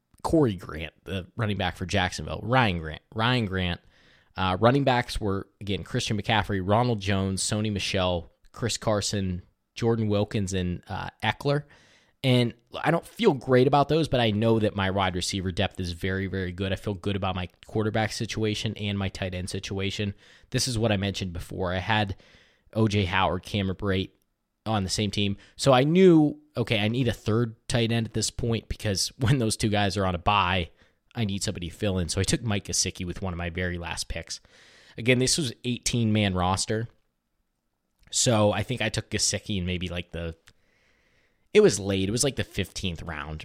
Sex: male